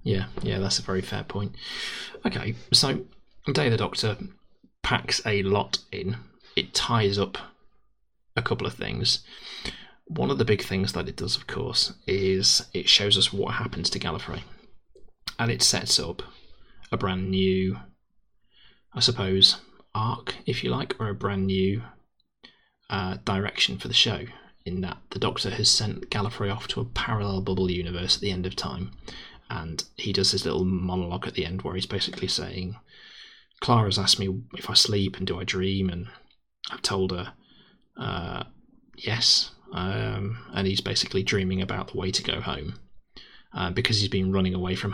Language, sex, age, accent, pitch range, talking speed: English, male, 20-39, British, 95-100 Hz, 170 wpm